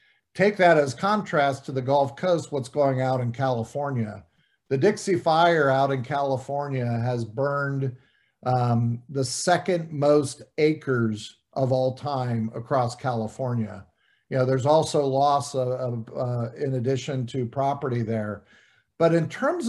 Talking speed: 145 wpm